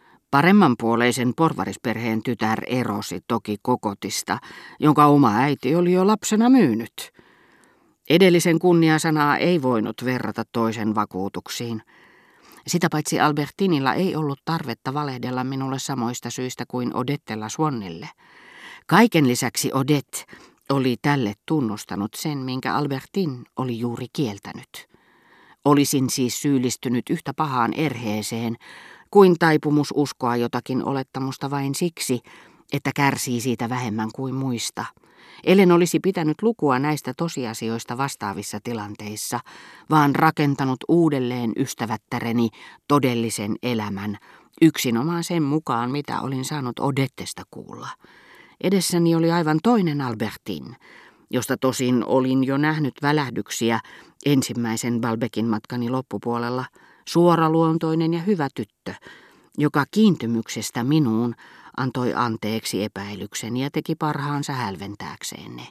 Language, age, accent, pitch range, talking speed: Finnish, 40-59, native, 115-150 Hz, 105 wpm